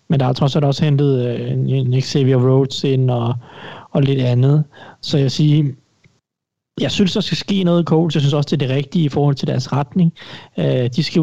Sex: male